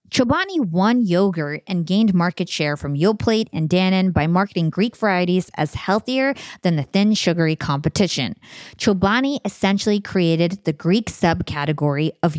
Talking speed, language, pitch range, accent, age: 140 wpm, English, 170-225 Hz, American, 20-39